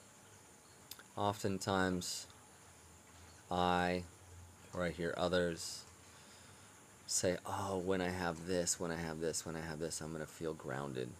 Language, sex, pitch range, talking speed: English, male, 85-95 Hz, 130 wpm